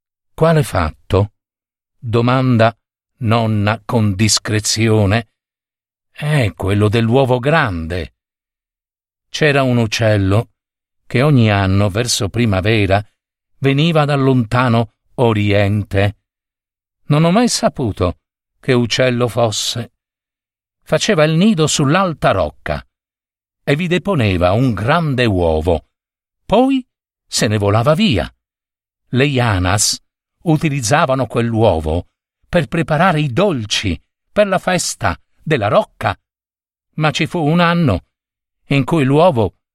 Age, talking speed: 50-69, 100 wpm